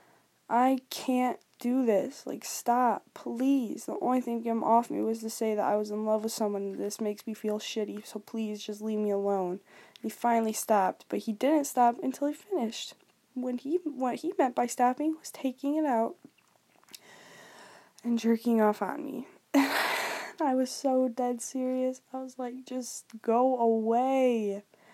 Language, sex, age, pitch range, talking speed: English, female, 10-29, 225-265 Hz, 175 wpm